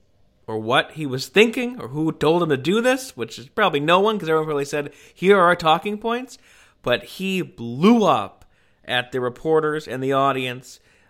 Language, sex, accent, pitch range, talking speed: English, male, American, 130-180 Hz, 195 wpm